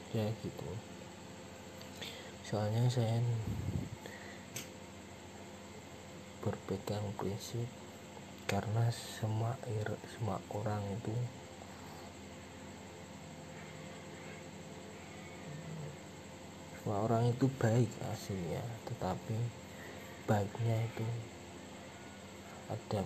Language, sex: Indonesian, male